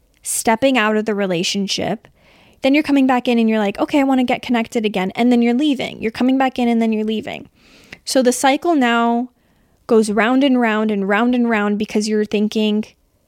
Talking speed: 210 wpm